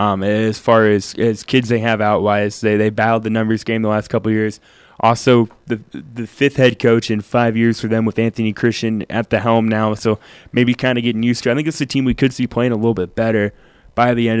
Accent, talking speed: American, 255 wpm